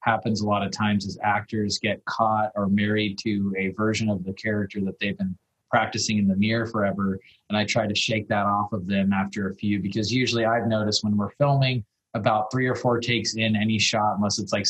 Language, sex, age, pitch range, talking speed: English, male, 20-39, 100-110 Hz, 225 wpm